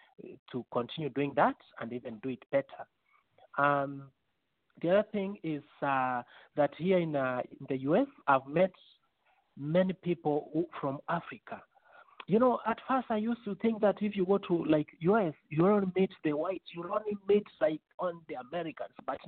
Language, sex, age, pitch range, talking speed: English, male, 50-69, 140-185 Hz, 175 wpm